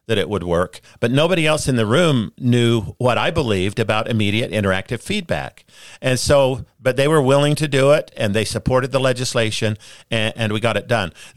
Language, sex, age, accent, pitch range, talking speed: English, male, 50-69, American, 105-135 Hz, 200 wpm